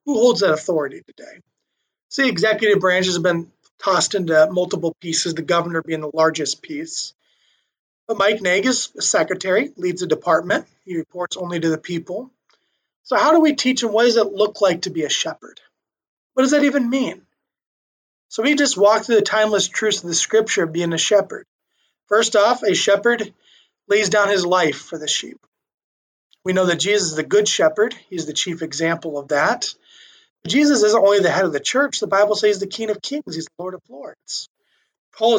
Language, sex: English, male